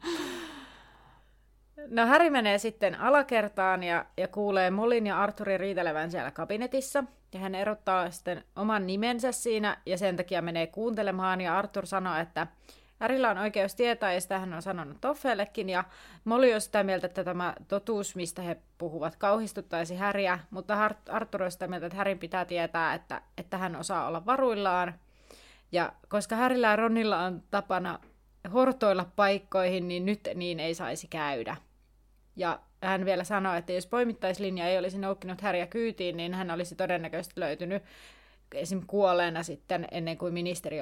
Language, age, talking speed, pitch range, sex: Finnish, 30-49, 155 wpm, 180-210 Hz, female